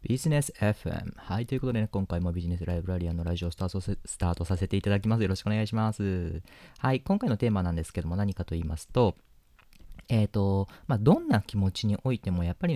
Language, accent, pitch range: Japanese, native, 85-115 Hz